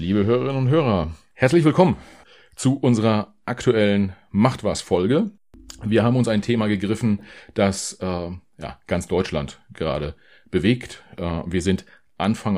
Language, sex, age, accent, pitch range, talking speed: German, male, 40-59, German, 90-115 Hz, 130 wpm